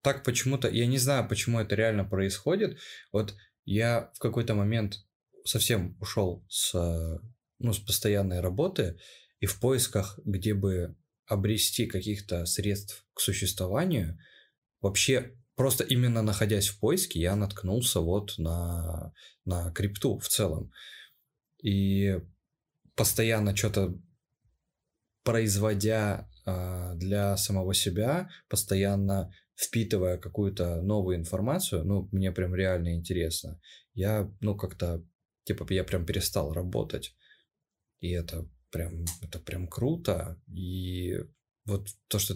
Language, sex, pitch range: Russian, male, 95-115 Hz